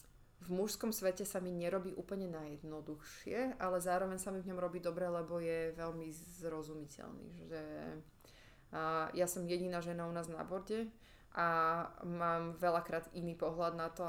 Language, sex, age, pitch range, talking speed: Slovak, female, 20-39, 160-180 Hz, 155 wpm